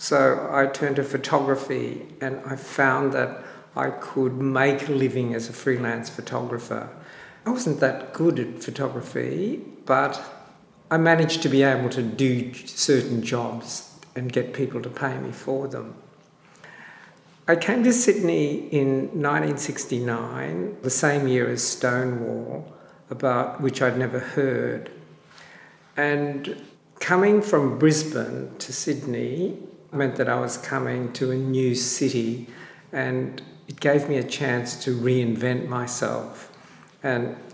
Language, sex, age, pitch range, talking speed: English, male, 60-79, 125-145 Hz, 135 wpm